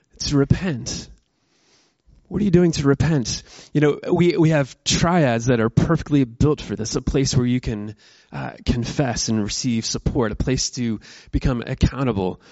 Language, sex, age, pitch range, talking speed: English, male, 20-39, 120-165 Hz, 170 wpm